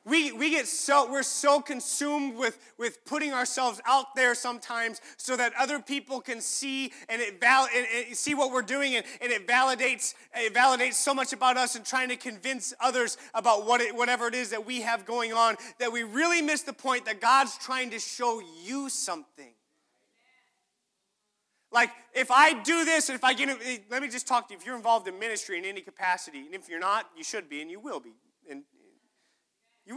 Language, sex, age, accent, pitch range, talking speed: English, male, 30-49, American, 210-270 Hz, 210 wpm